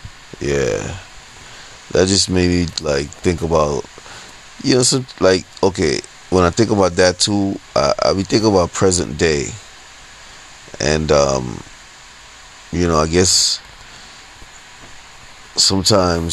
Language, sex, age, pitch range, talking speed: English, male, 30-49, 75-90 Hz, 120 wpm